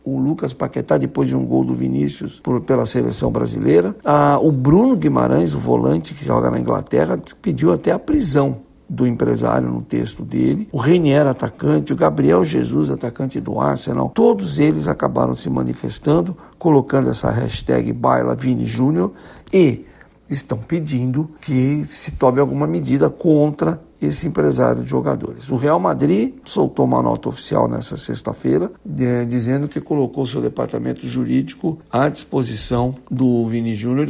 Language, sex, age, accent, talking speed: Portuguese, male, 60-79, Brazilian, 150 wpm